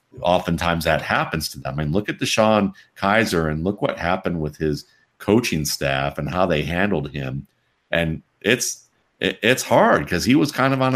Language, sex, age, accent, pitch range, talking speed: English, male, 50-69, American, 80-110 Hz, 185 wpm